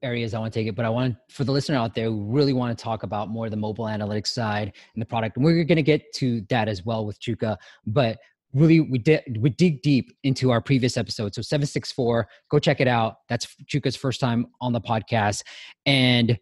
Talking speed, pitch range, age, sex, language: 235 wpm, 110-145 Hz, 20-39, male, English